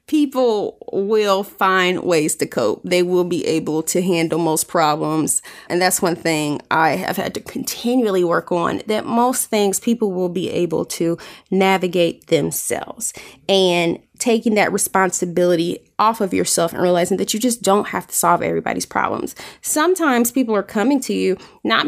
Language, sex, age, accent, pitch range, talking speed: English, female, 20-39, American, 180-225 Hz, 165 wpm